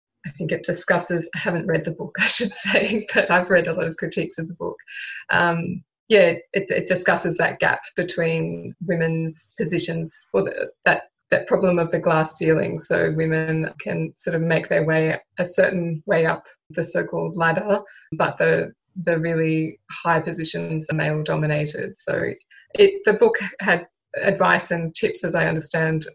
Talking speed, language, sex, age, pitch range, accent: 170 wpm, English, female, 20-39, 160-185 Hz, Australian